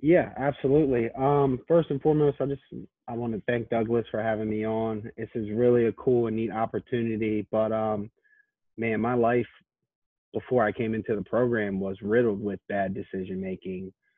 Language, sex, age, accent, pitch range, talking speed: English, male, 30-49, American, 105-125 Hz, 180 wpm